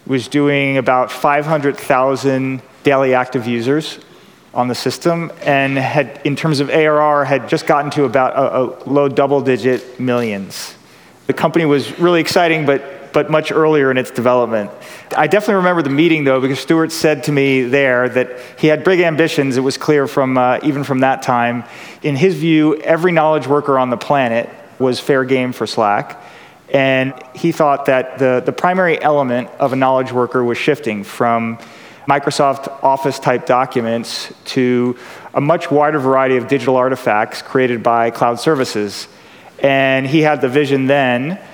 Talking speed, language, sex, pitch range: 165 wpm, English, male, 125-145 Hz